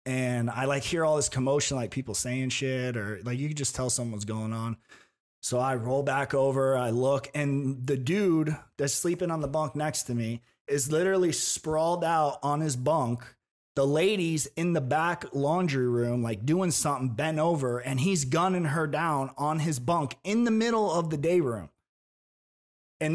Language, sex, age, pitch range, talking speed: English, male, 30-49, 115-150 Hz, 190 wpm